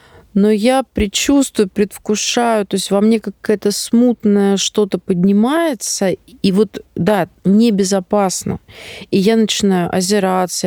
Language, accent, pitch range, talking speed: Russian, native, 185-215 Hz, 120 wpm